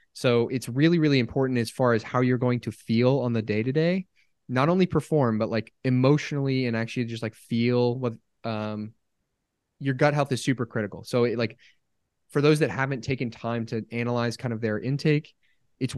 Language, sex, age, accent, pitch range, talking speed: English, male, 20-39, American, 115-135 Hz, 195 wpm